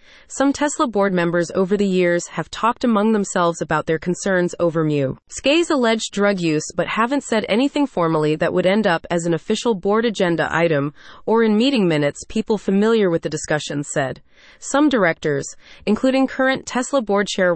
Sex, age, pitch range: female, 30-49, 170-235 Hz